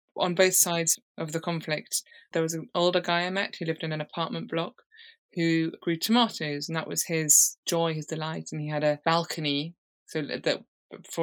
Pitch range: 150-180 Hz